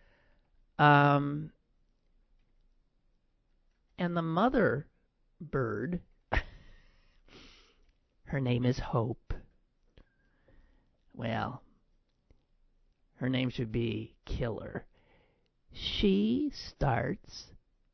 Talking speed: 55 wpm